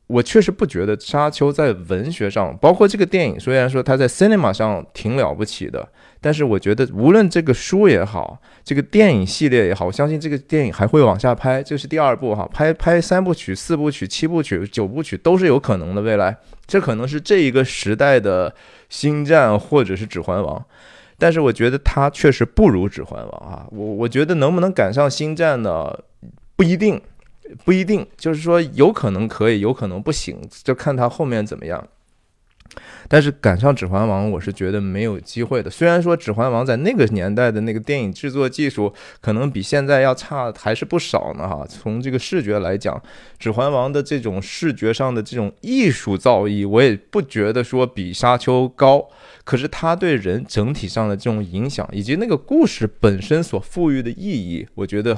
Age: 20-39